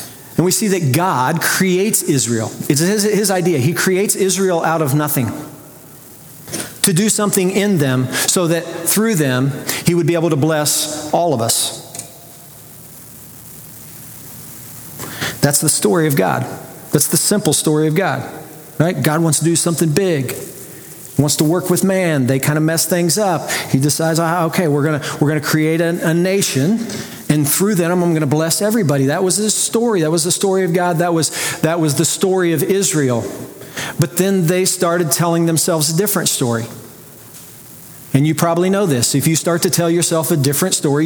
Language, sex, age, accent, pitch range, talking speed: English, male, 40-59, American, 150-185 Hz, 185 wpm